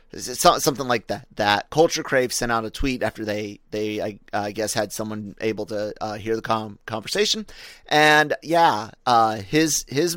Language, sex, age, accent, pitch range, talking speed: English, male, 30-49, American, 110-150 Hz, 190 wpm